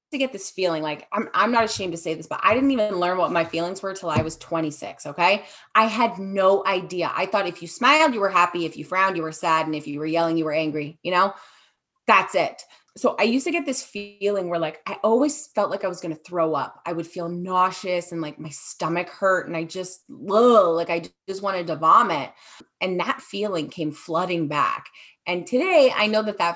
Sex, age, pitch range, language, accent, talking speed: female, 20-39, 170-220 Hz, English, American, 235 wpm